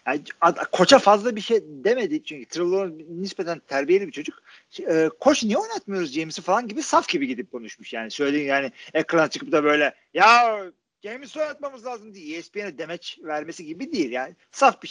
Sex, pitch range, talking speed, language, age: male, 150-230 Hz, 175 wpm, Turkish, 50-69